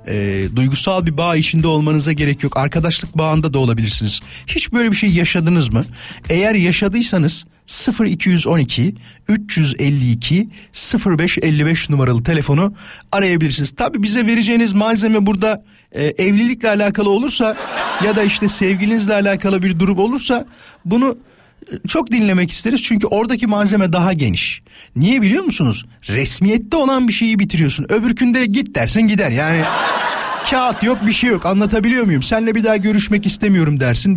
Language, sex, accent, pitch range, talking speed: Turkish, male, native, 155-220 Hz, 135 wpm